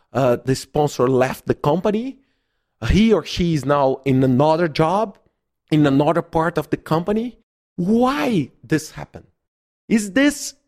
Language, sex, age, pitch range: English, male, 40-59, 135-210 Hz